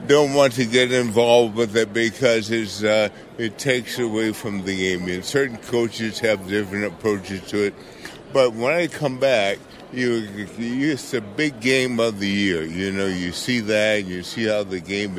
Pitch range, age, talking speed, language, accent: 100-130 Hz, 60-79, 195 wpm, English, American